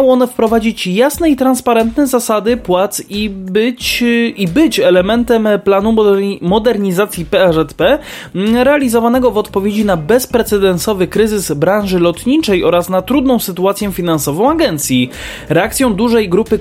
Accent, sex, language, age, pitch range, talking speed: native, male, Polish, 20-39, 170-225 Hz, 115 wpm